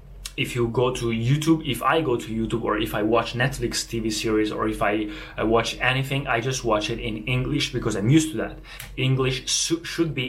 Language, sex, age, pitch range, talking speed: Italian, male, 20-39, 115-140 Hz, 210 wpm